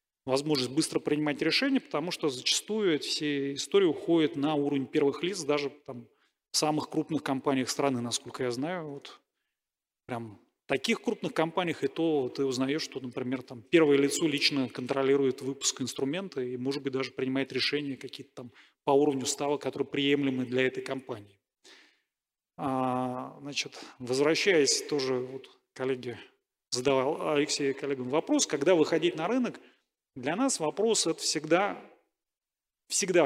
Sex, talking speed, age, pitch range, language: male, 150 wpm, 30-49, 135-165 Hz, Russian